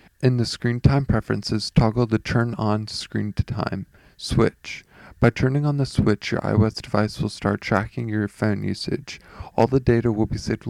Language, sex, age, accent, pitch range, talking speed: English, male, 20-39, American, 100-115 Hz, 185 wpm